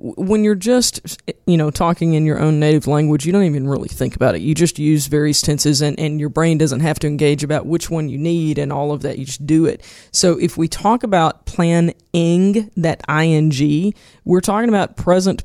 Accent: American